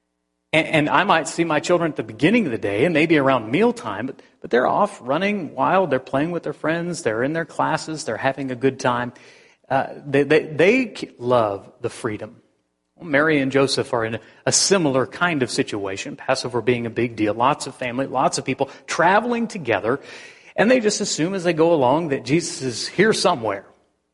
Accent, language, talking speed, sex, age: American, English, 195 wpm, male, 40-59